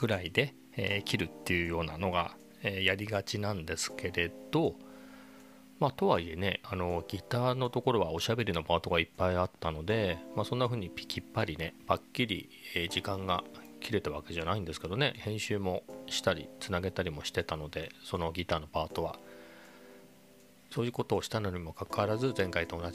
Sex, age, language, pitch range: male, 40-59, Japanese, 85-105 Hz